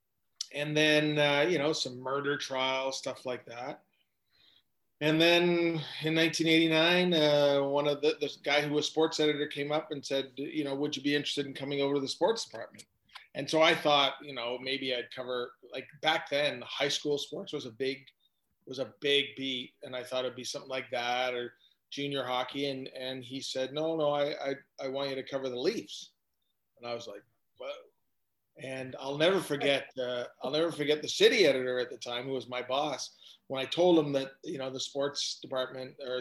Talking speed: 205 wpm